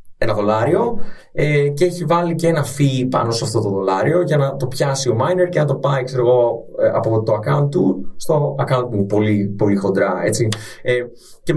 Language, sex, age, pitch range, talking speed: Greek, male, 20-39, 110-160 Hz, 200 wpm